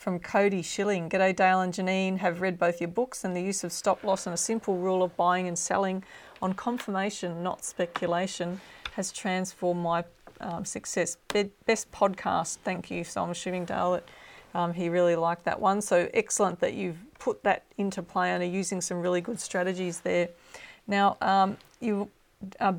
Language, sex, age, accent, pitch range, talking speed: English, female, 40-59, Australian, 175-200 Hz, 185 wpm